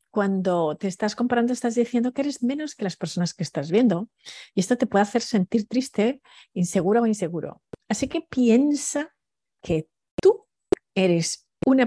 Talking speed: 160 wpm